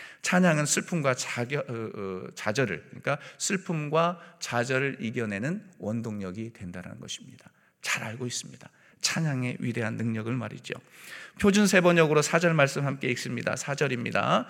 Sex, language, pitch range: male, Korean, 120-160 Hz